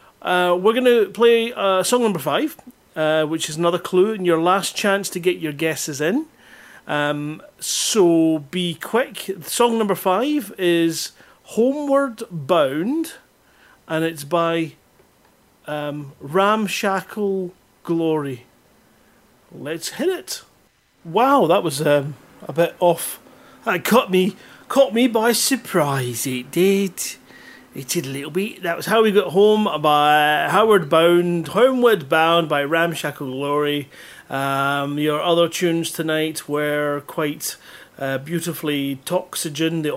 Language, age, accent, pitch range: English, 40-59, British, 150-200 Hz